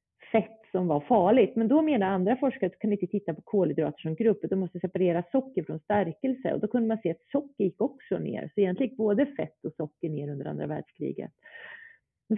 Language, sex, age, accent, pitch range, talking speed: Swedish, female, 30-49, native, 165-210 Hz, 215 wpm